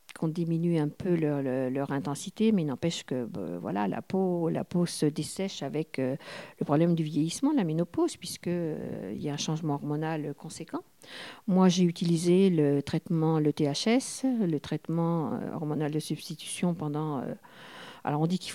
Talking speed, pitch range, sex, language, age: 180 wpm, 150-190 Hz, female, French, 50-69